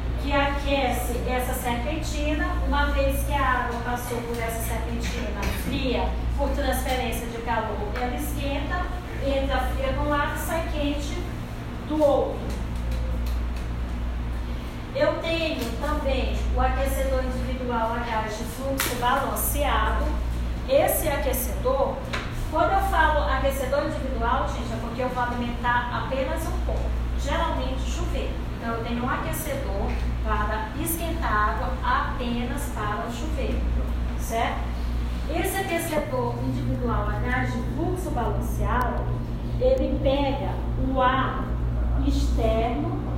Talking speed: 115 wpm